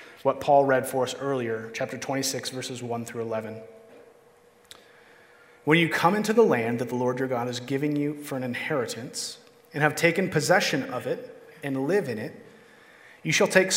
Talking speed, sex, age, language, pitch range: 185 wpm, male, 30-49, English, 130-190 Hz